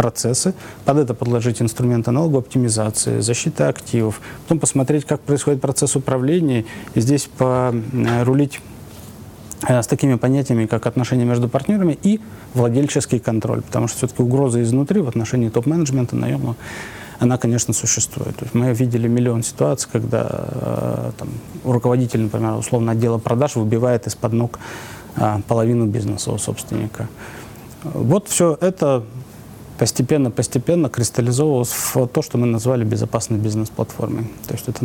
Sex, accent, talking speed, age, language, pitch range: male, native, 125 wpm, 20-39, Russian, 115-135 Hz